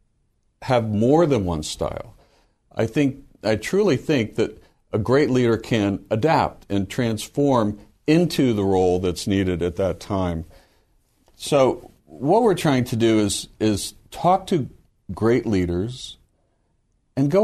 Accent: American